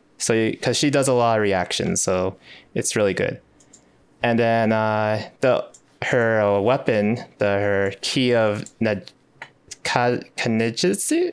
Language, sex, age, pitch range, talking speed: English, male, 20-39, 105-140 Hz, 130 wpm